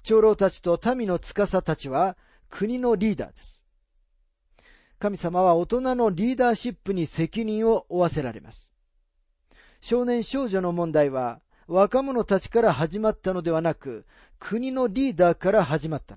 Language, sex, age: Japanese, male, 40-59